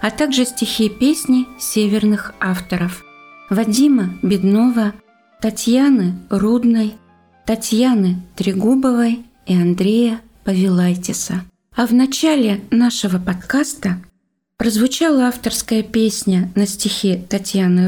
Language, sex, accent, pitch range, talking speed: Russian, female, native, 185-235 Hz, 85 wpm